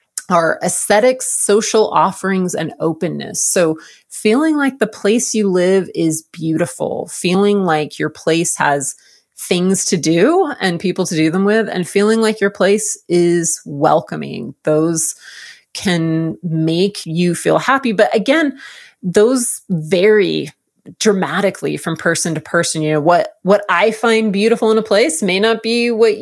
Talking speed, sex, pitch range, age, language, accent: 150 wpm, female, 155-205 Hz, 30-49, English, American